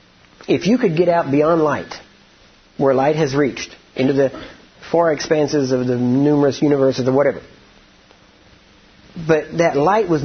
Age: 50-69